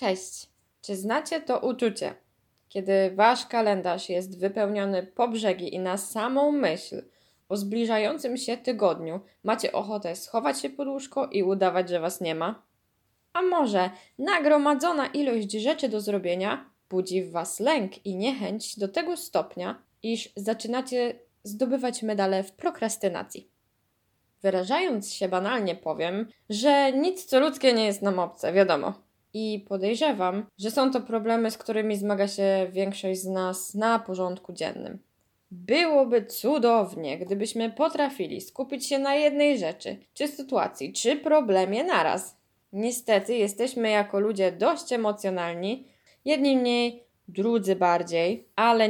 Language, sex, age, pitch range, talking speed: Polish, female, 10-29, 185-255 Hz, 135 wpm